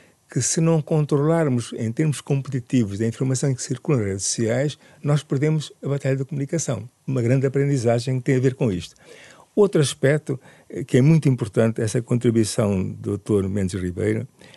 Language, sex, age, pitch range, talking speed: Portuguese, male, 50-69, 105-145 Hz, 175 wpm